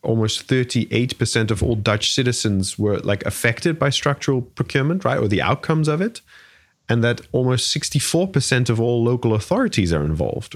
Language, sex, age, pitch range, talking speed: English, male, 30-49, 100-130 Hz, 160 wpm